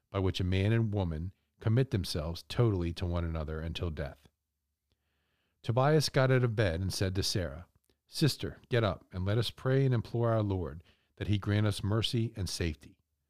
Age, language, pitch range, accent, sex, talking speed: 50-69, English, 85-105 Hz, American, male, 185 wpm